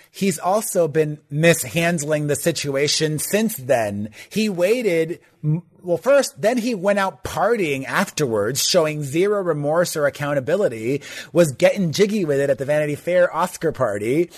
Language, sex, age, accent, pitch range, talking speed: English, male, 30-49, American, 145-180 Hz, 140 wpm